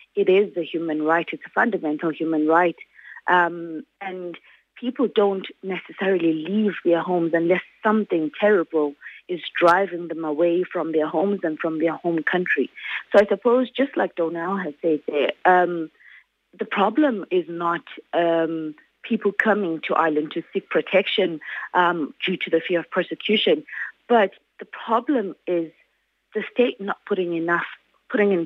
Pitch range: 165-210 Hz